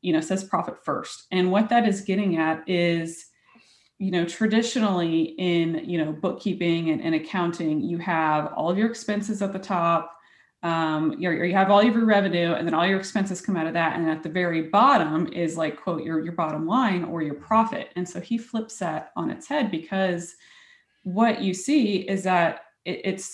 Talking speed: 200 wpm